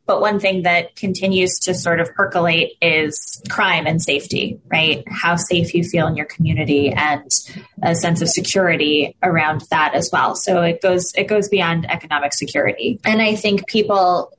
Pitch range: 165-200 Hz